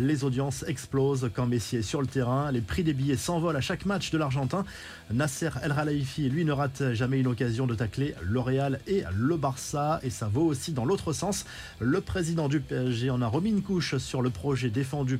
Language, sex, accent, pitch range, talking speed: French, male, French, 125-150 Hz, 215 wpm